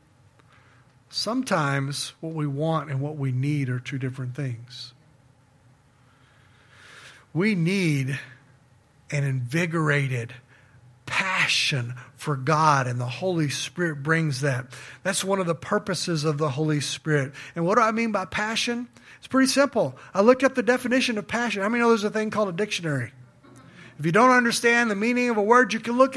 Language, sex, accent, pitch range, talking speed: English, male, American, 130-210 Hz, 170 wpm